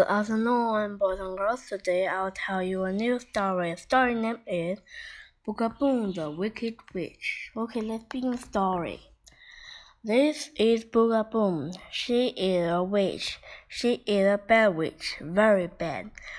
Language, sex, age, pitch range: Chinese, female, 20-39, 200-255 Hz